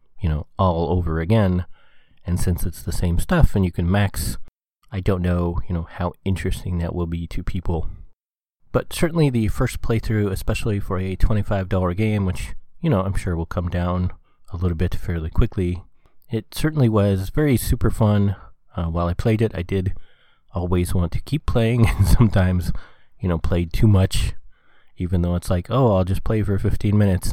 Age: 30-49